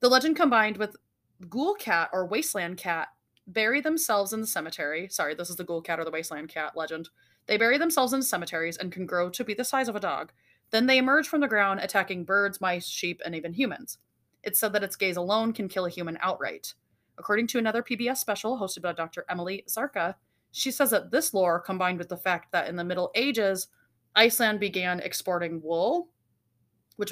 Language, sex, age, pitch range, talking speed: English, female, 20-39, 175-220 Hz, 210 wpm